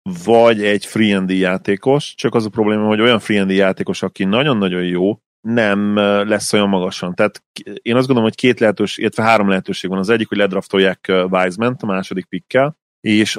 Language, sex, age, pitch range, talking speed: Hungarian, male, 30-49, 95-110 Hz, 175 wpm